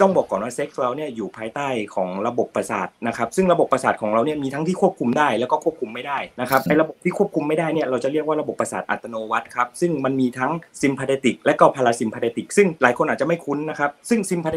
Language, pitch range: Thai, 125-170 Hz